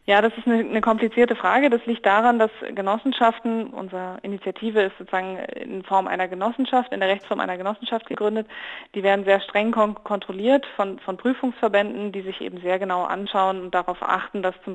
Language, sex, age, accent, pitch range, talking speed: German, female, 20-39, German, 185-215 Hz, 180 wpm